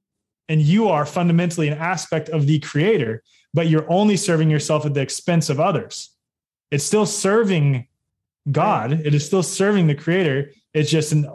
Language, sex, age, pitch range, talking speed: English, male, 20-39, 140-165 Hz, 170 wpm